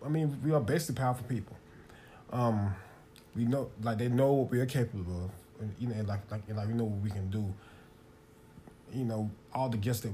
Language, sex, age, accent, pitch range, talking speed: English, male, 20-39, American, 105-130 Hz, 225 wpm